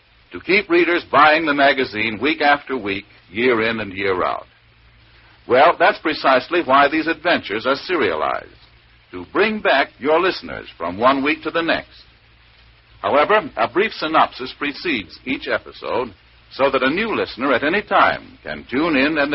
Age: 60-79